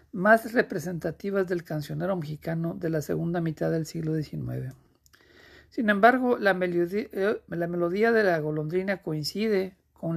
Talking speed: 140 wpm